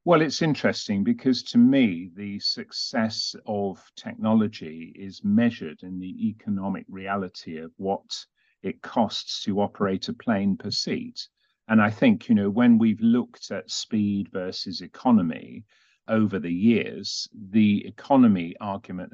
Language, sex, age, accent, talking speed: English, male, 40-59, British, 140 wpm